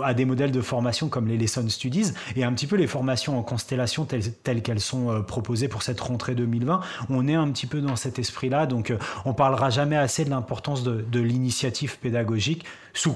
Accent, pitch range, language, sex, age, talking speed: French, 120-140 Hz, French, male, 30-49, 215 wpm